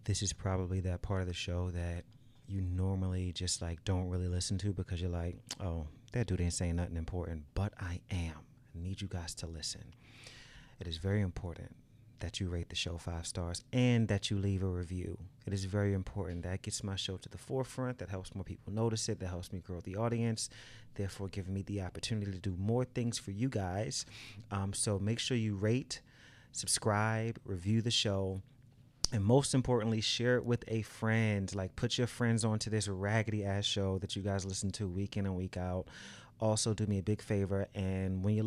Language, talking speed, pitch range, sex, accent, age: English, 210 wpm, 95-120 Hz, male, American, 30-49